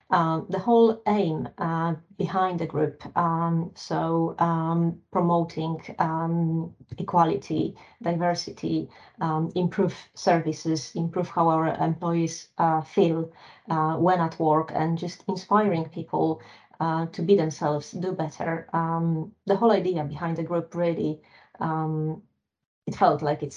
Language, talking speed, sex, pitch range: English, 130 wpm, female, 160-185 Hz